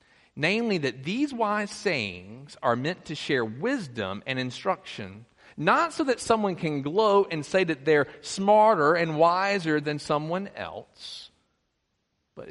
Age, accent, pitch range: 40-59, American, 115-165 Hz